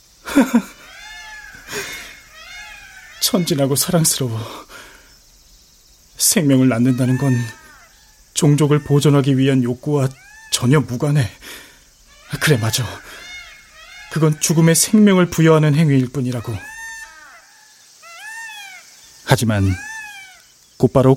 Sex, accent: male, native